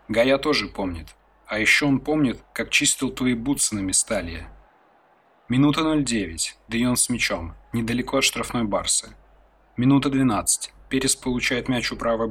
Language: Russian